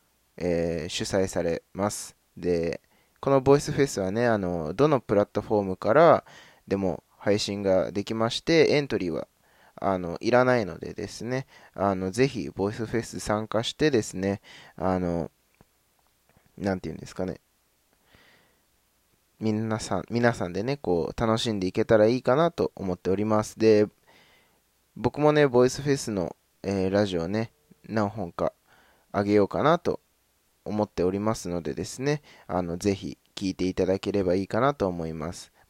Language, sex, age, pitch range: Japanese, male, 20-39, 90-110 Hz